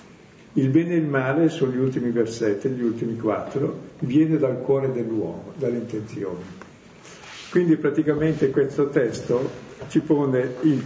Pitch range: 110-145 Hz